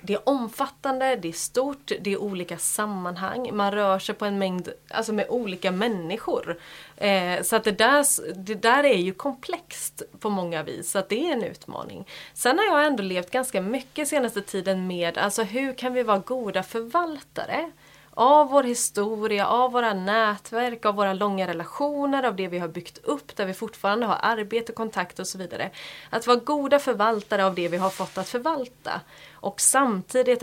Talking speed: 185 wpm